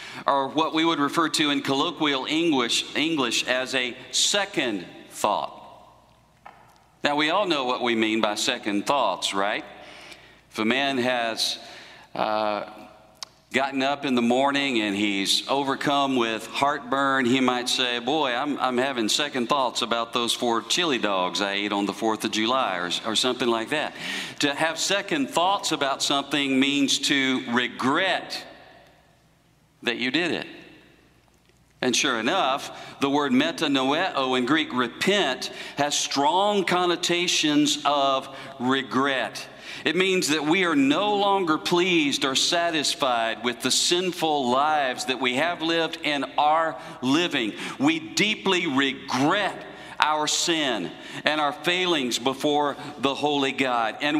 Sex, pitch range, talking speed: male, 125-170 Hz, 140 wpm